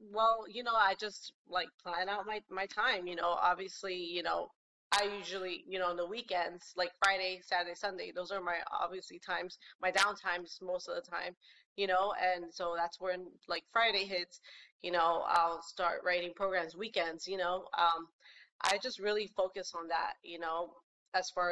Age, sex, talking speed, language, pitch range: 20-39, female, 185 wpm, English, 175-215 Hz